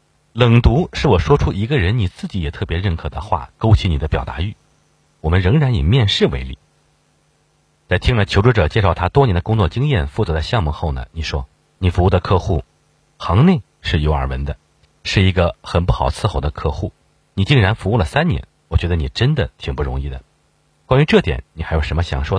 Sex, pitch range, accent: male, 75-105 Hz, native